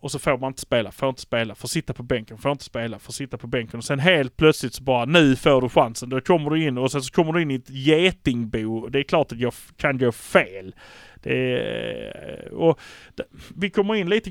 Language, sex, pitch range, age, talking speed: Swedish, male, 125-160 Hz, 30-49, 240 wpm